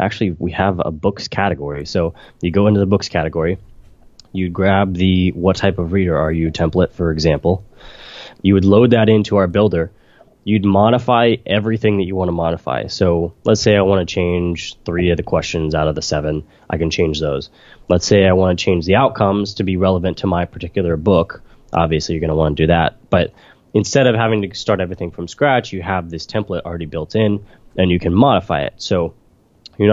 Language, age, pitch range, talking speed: English, 20-39, 85-105 Hz, 210 wpm